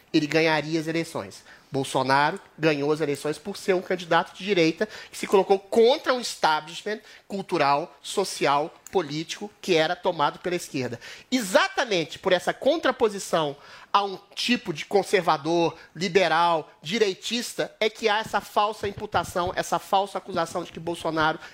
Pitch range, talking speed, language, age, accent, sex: 165-235 Hz, 140 wpm, Portuguese, 30-49, Brazilian, male